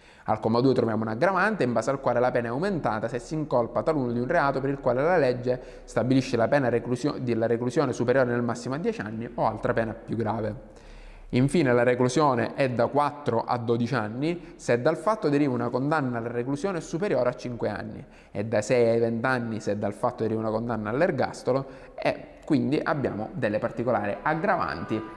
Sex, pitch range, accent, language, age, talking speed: male, 115-145 Hz, native, Italian, 20-39, 200 wpm